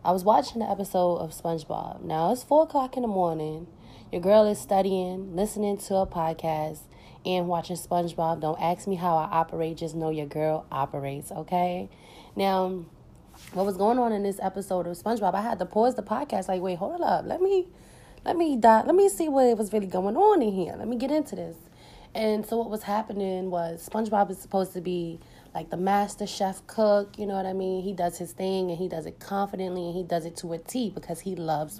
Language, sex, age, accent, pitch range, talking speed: English, female, 20-39, American, 175-215 Hz, 220 wpm